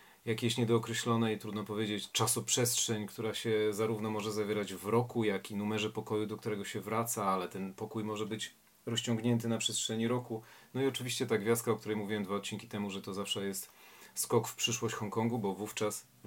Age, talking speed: 40-59, 190 wpm